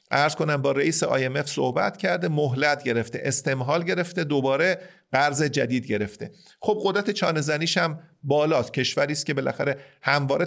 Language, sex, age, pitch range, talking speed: Persian, male, 40-59, 125-165 Hz, 140 wpm